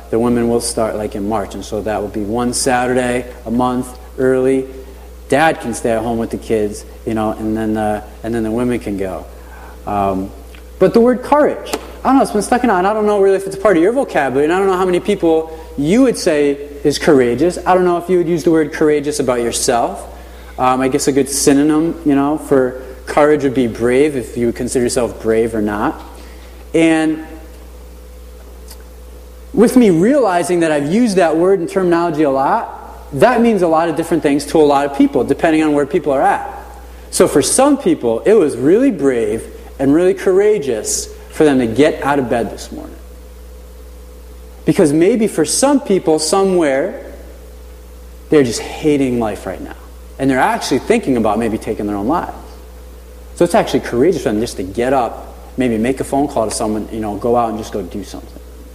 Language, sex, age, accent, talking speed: English, male, 30-49, American, 205 wpm